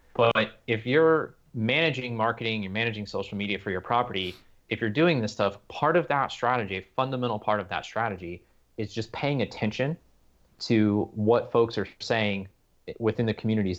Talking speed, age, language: 170 wpm, 30-49, English